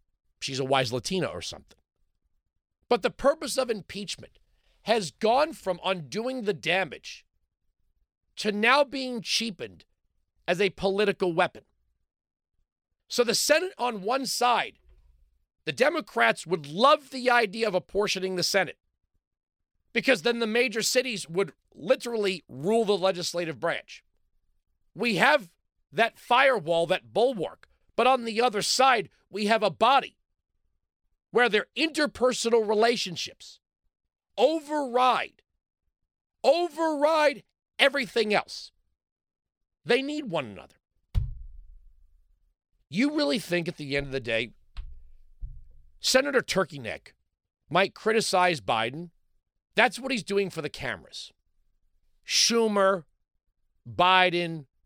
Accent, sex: American, male